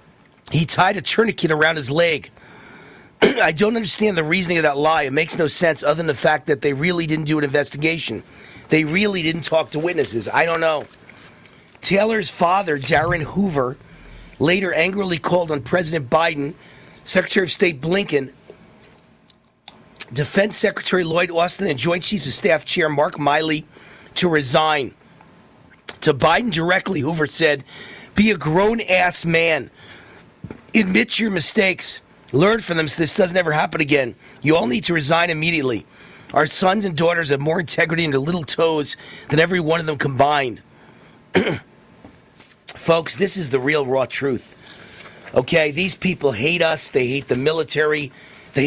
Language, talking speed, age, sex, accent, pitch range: English, 160 wpm, 40-59, male, American, 145-175 Hz